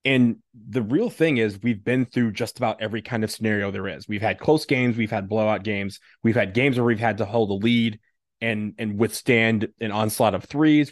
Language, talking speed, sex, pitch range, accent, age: English, 225 wpm, male, 105-130 Hz, American, 20-39